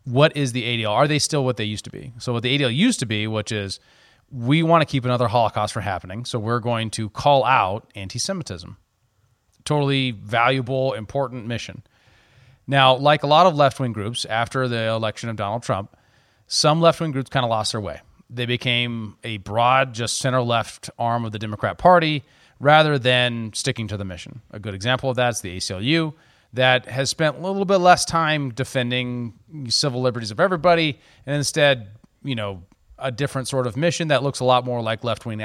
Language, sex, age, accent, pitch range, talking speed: English, male, 30-49, American, 110-140 Hz, 195 wpm